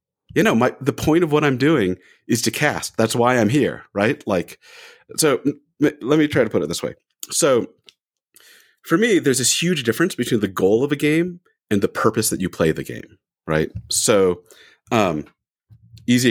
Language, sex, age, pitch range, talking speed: English, male, 40-59, 110-160 Hz, 190 wpm